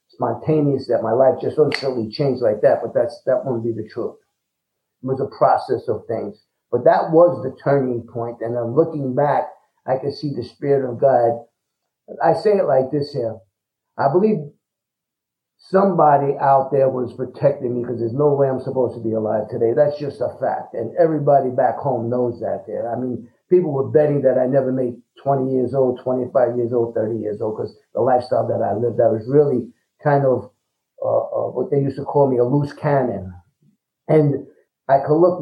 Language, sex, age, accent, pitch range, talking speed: English, male, 50-69, American, 120-145 Hz, 200 wpm